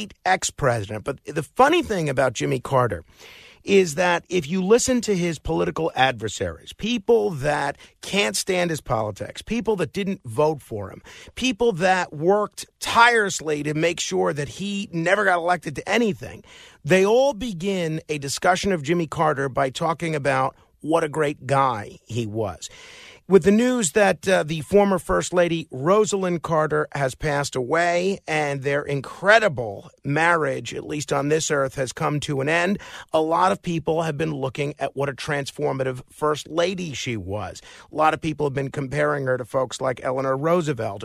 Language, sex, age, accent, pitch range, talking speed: English, male, 50-69, American, 140-180 Hz, 170 wpm